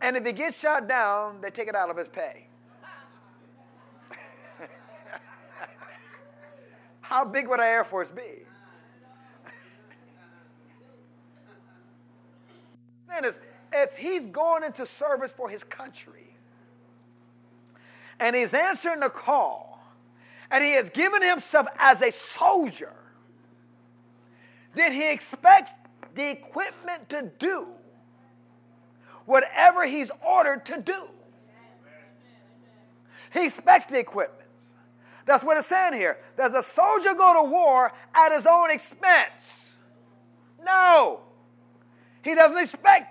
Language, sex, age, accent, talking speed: English, male, 40-59, American, 105 wpm